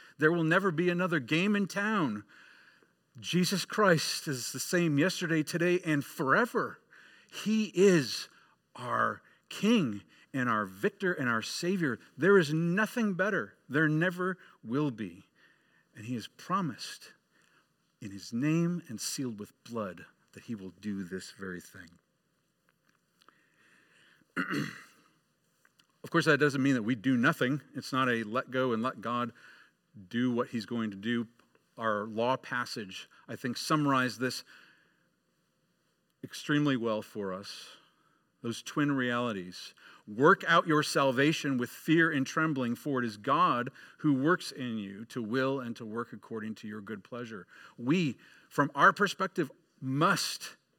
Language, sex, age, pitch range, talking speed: English, male, 50-69, 120-175 Hz, 145 wpm